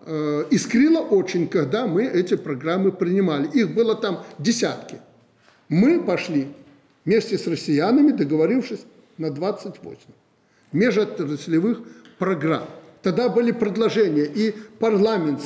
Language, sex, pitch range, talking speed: Russian, male, 160-235 Hz, 105 wpm